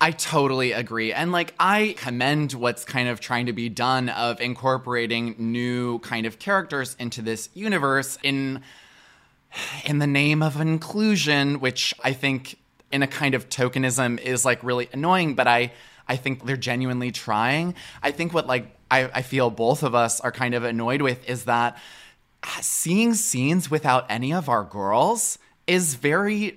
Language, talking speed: English, 165 wpm